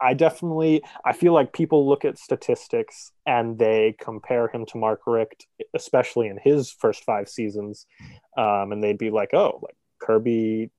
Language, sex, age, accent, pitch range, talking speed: English, male, 20-39, American, 110-135 Hz, 165 wpm